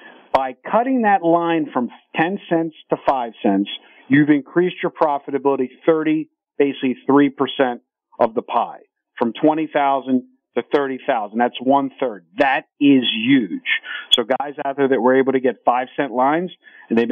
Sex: male